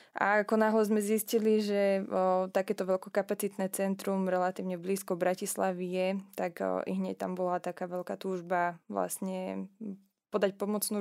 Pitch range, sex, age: 185-205 Hz, female, 20-39